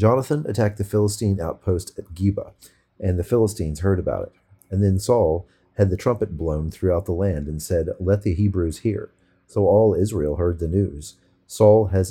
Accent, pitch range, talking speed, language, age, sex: American, 90-105 Hz, 185 wpm, English, 40-59, male